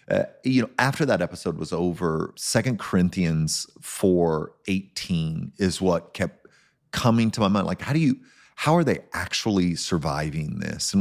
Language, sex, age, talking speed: English, male, 30-49, 165 wpm